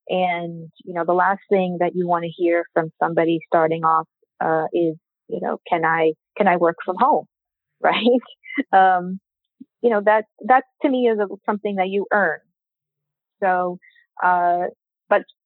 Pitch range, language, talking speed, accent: 170-210 Hz, English, 165 wpm, American